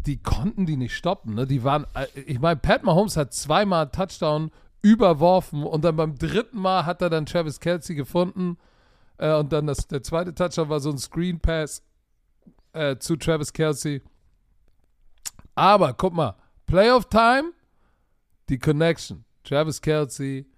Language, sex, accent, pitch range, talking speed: German, male, German, 135-175 Hz, 150 wpm